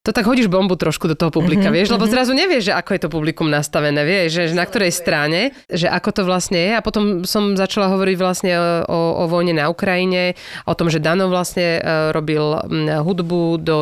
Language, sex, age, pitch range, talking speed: Slovak, female, 30-49, 160-190 Hz, 205 wpm